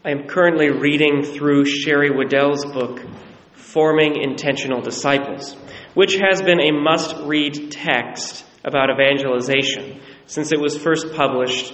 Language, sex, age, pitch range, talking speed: English, male, 30-49, 135-160 Hz, 125 wpm